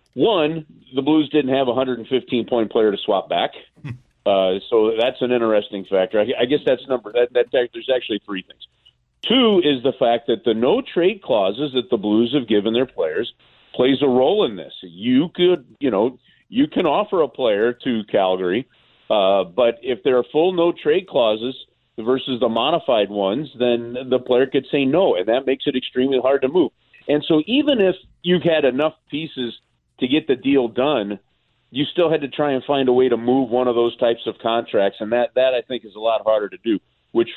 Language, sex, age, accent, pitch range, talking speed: English, male, 40-59, American, 115-150 Hz, 205 wpm